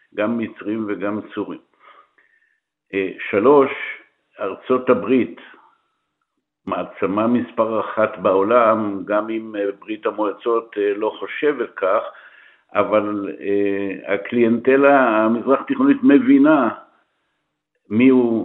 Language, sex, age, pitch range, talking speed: Hebrew, male, 60-79, 105-130 Hz, 75 wpm